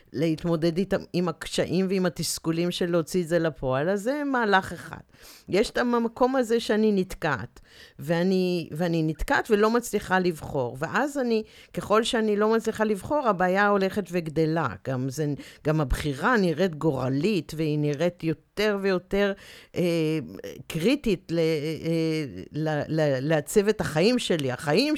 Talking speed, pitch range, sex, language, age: 130 wpm, 165-245 Hz, female, Hebrew, 50-69